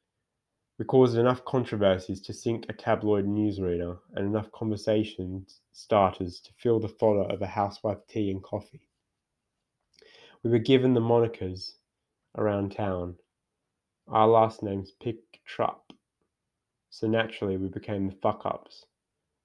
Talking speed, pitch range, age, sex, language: 125 wpm, 100-115 Hz, 20-39, male, English